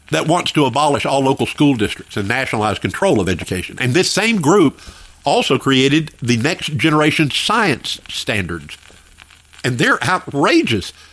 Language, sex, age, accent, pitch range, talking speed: English, male, 50-69, American, 95-155 Hz, 145 wpm